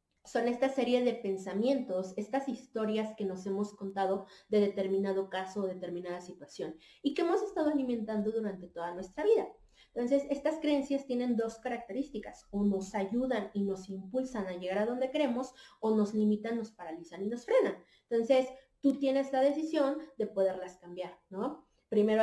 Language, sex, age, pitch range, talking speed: Spanish, female, 30-49, 195-250 Hz, 165 wpm